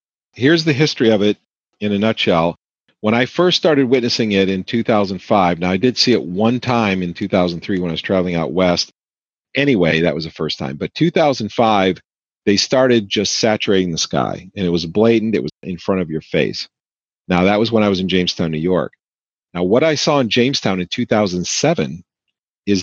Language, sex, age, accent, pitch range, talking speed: English, male, 40-59, American, 90-120 Hz, 195 wpm